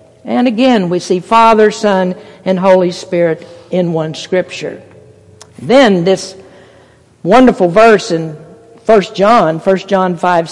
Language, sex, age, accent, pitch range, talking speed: English, female, 50-69, American, 180-220 Hz, 125 wpm